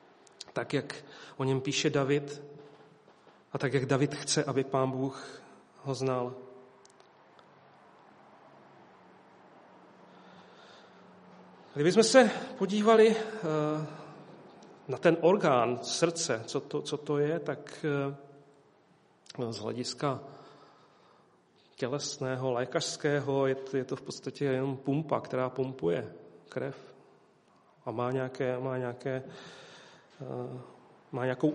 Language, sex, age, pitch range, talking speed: Czech, male, 40-59, 135-155 Hz, 95 wpm